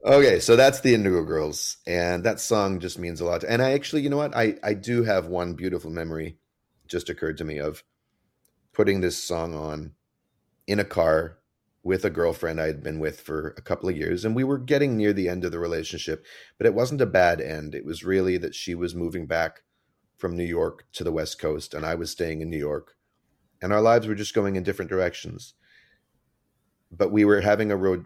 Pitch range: 80-95 Hz